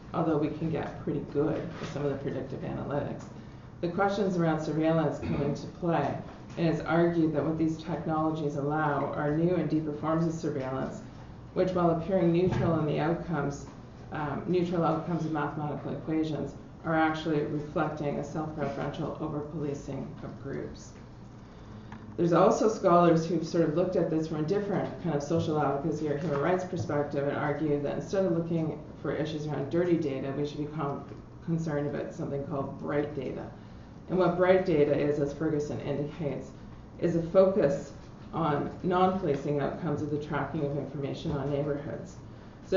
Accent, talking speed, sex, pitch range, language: American, 165 wpm, female, 140-165 Hz, English